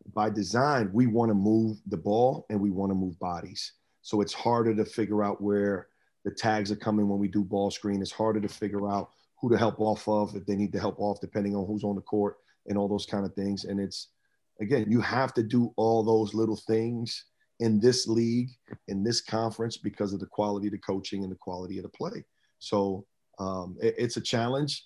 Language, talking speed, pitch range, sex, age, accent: English, 225 wpm, 100-115 Hz, male, 40-59, American